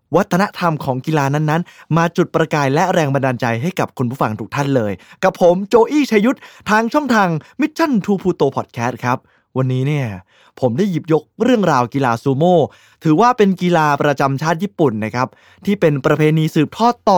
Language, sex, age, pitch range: Thai, male, 20-39, 140-195 Hz